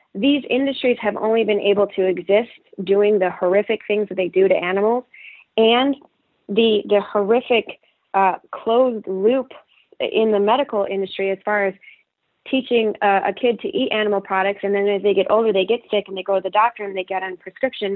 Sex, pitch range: female, 195-235 Hz